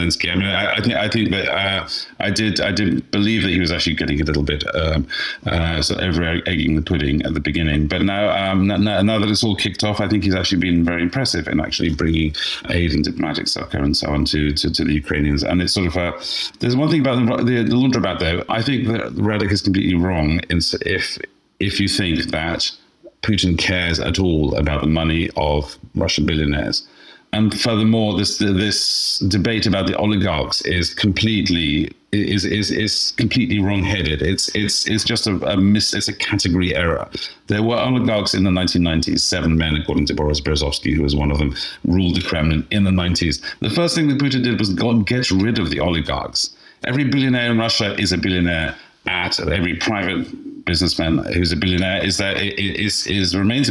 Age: 40-59